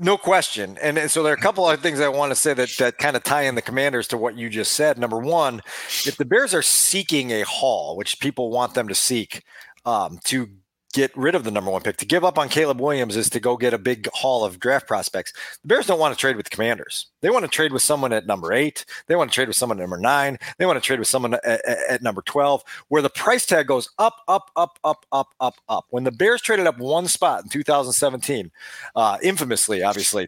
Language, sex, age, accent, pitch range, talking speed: English, male, 40-59, American, 130-170 Hz, 260 wpm